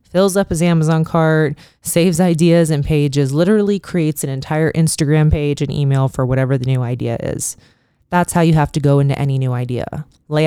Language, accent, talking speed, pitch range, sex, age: English, American, 195 wpm, 130-165 Hz, female, 20-39